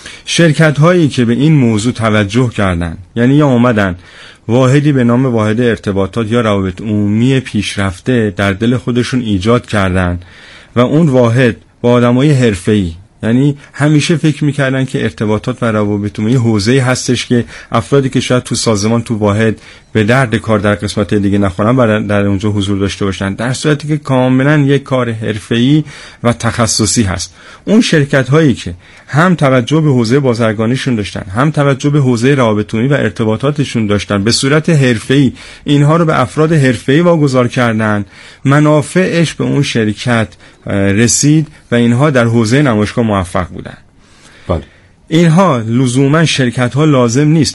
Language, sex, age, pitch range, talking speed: Persian, male, 30-49, 105-140 Hz, 150 wpm